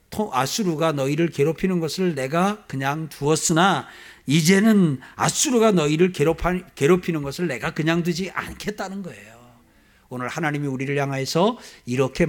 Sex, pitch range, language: male, 120-180 Hz, Korean